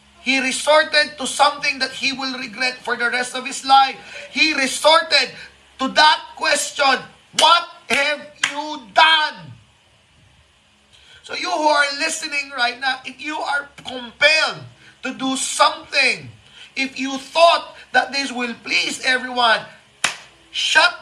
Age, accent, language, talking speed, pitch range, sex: 30-49, native, Filipino, 130 wpm, 235-290 Hz, male